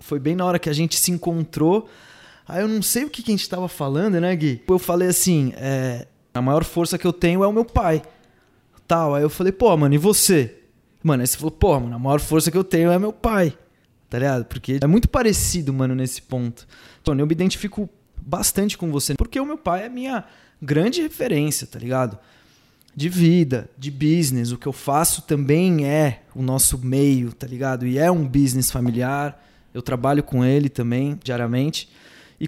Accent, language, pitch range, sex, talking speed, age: Brazilian, Portuguese, 135-175 Hz, male, 210 wpm, 20-39